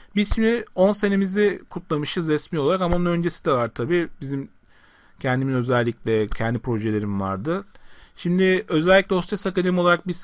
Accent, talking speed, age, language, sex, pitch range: native, 145 wpm, 40-59, Turkish, male, 120-170 Hz